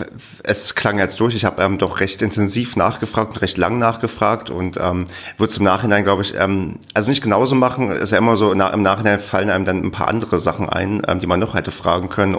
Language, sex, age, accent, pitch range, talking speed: German, male, 30-49, German, 95-115 Hz, 230 wpm